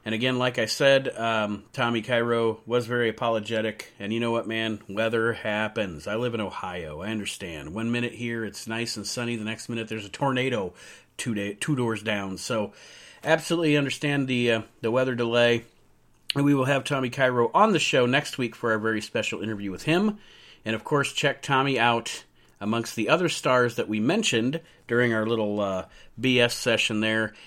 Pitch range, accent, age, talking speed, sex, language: 110-135 Hz, American, 40-59, 190 wpm, male, English